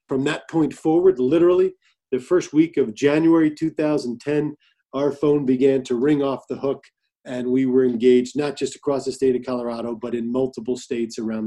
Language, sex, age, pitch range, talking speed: English, male, 40-59, 130-145 Hz, 185 wpm